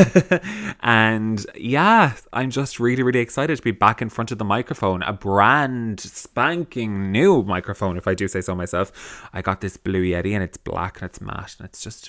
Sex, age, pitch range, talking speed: male, 20-39, 95-130 Hz, 200 wpm